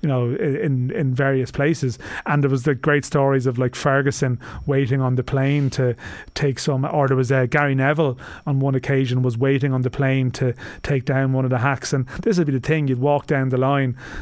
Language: English